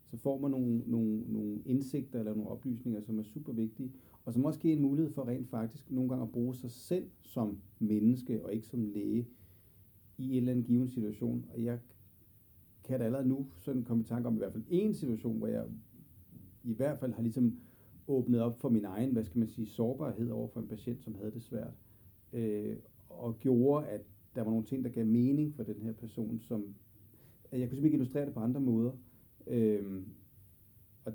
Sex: male